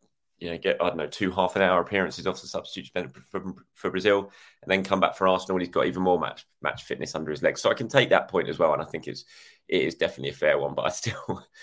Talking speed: 275 wpm